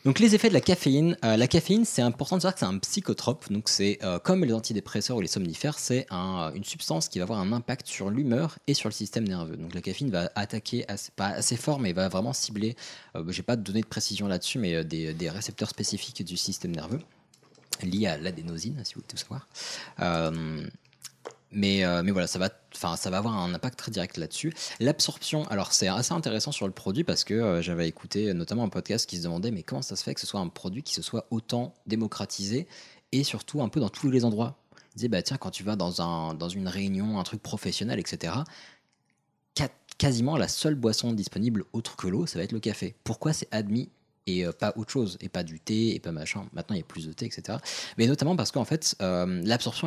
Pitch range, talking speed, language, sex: 95-125 Hz, 235 wpm, French, male